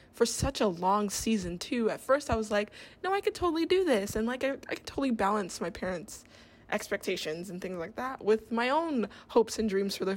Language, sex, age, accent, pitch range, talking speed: English, female, 10-29, American, 195-240 Hz, 230 wpm